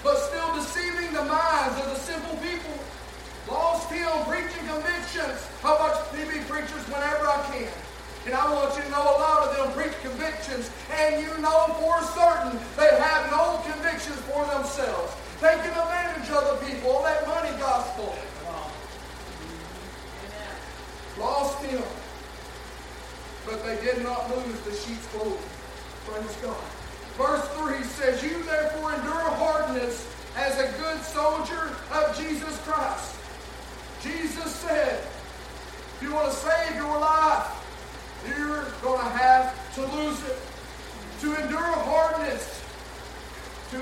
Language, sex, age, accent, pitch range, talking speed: English, male, 40-59, American, 275-315 Hz, 135 wpm